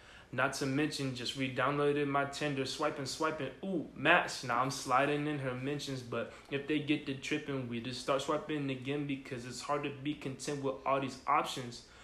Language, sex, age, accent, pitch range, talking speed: English, male, 20-39, American, 130-145 Hz, 200 wpm